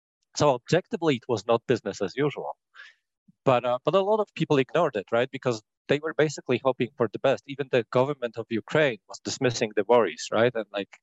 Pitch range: 115-145 Hz